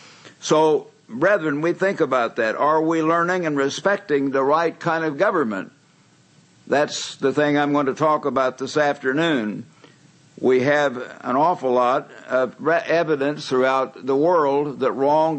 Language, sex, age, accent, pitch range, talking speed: English, male, 60-79, American, 140-160 Hz, 150 wpm